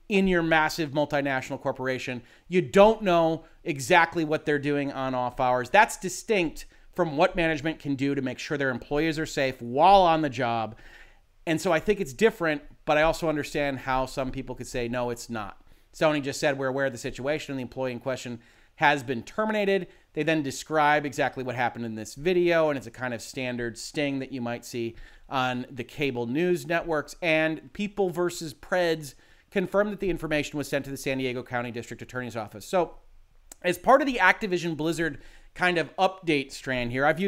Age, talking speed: 30-49, 200 wpm